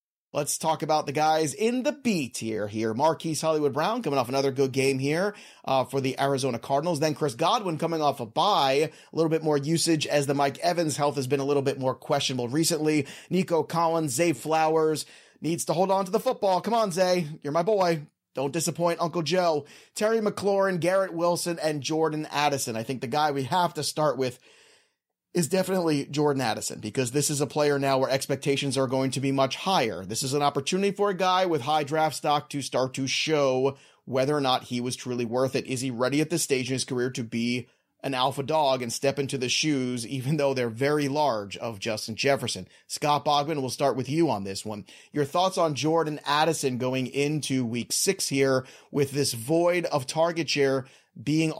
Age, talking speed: 30-49, 205 wpm